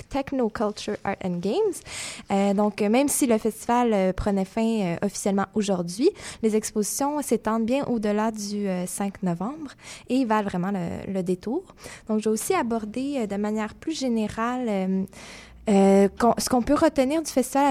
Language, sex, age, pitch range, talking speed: French, female, 20-39, 205-250 Hz, 180 wpm